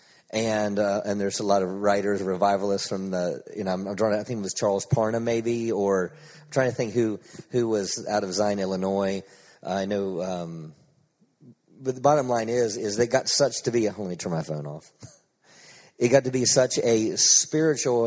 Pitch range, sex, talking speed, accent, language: 110-145 Hz, male, 215 wpm, American, English